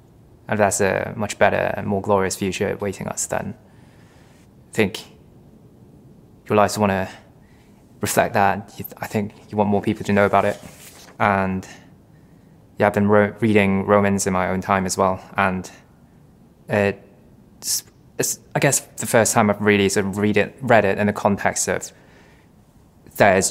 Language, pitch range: English, 95-105 Hz